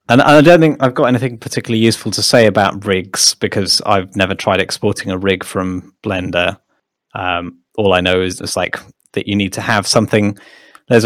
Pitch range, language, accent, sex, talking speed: 95-115 Hz, English, British, male, 195 wpm